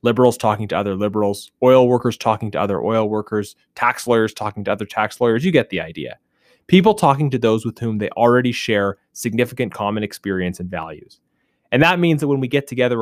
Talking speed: 210 wpm